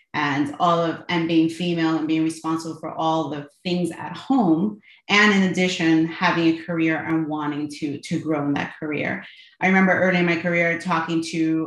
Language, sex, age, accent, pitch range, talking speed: English, female, 30-49, American, 160-185 Hz, 190 wpm